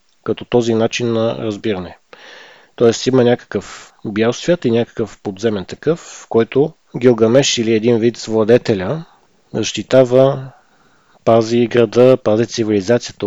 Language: Bulgarian